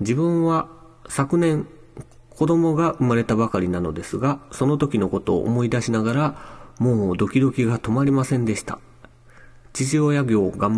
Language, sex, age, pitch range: Japanese, male, 40-59, 95-120 Hz